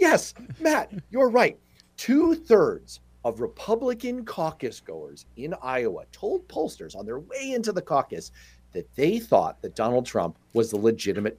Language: English